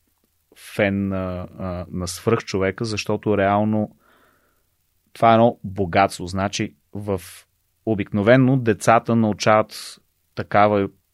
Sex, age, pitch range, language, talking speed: male, 30-49, 90-110 Hz, Bulgarian, 95 wpm